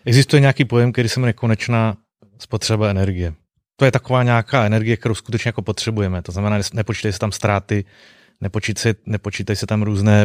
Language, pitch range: Czech, 100-115 Hz